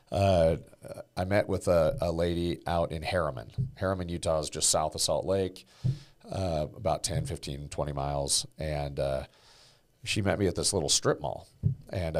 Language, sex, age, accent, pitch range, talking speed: English, male, 40-59, American, 80-105 Hz, 170 wpm